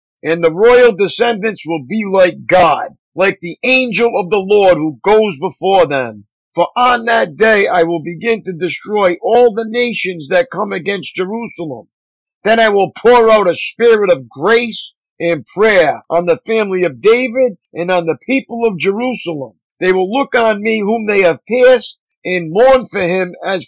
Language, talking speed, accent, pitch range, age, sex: English, 175 wpm, American, 175-225 Hz, 50-69, male